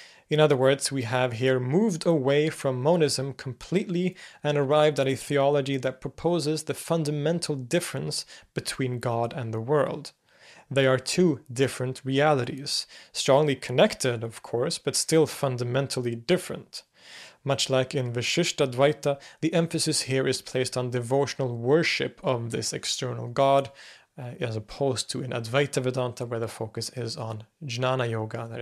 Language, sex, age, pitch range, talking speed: English, male, 30-49, 125-150 Hz, 150 wpm